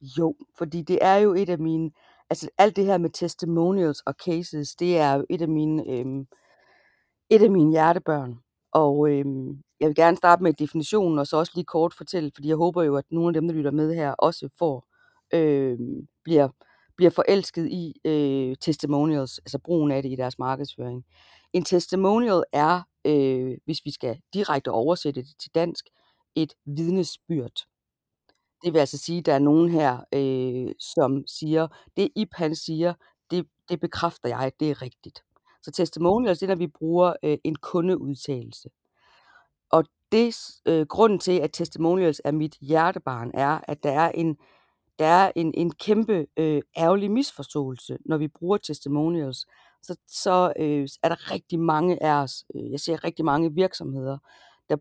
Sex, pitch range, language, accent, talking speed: female, 140-175 Hz, Danish, native, 175 wpm